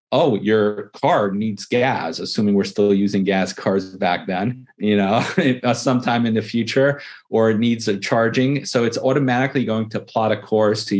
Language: English